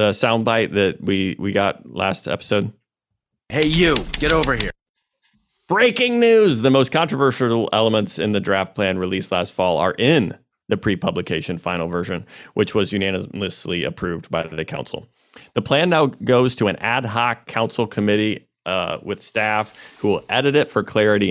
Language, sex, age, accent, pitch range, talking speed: English, male, 30-49, American, 95-120 Hz, 165 wpm